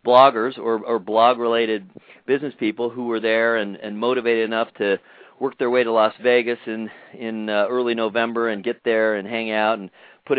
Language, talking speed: English, 190 wpm